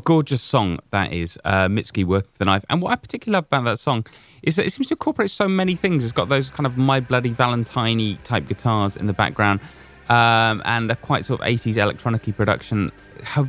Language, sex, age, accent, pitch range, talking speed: English, male, 30-49, British, 90-120 Hz, 225 wpm